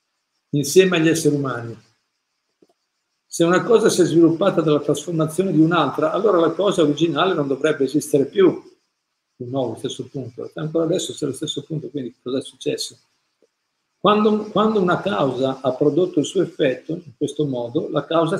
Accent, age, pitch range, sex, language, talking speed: native, 50-69, 140-175 Hz, male, Italian, 165 wpm